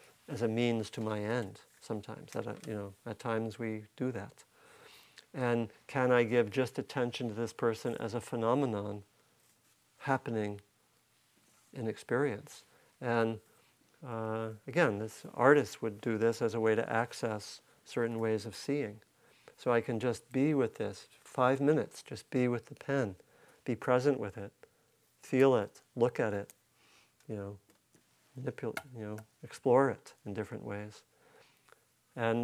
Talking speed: 150 wpm